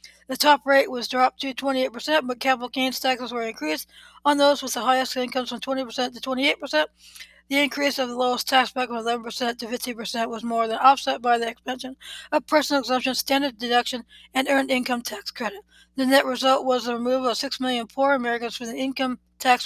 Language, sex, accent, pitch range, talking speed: English, female, American, 240-275 Hz, 200 wpm